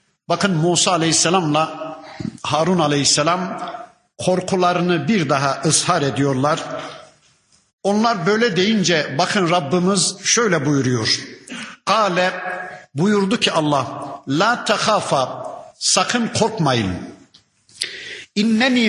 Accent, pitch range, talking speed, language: native, 160-215 Hz, 80 wpm, Turkish